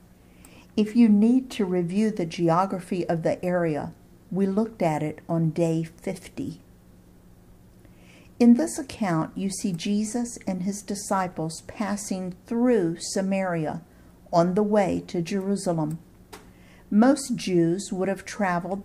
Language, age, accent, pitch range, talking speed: English, 50-69, American, 170-220 Hz, 125 wpm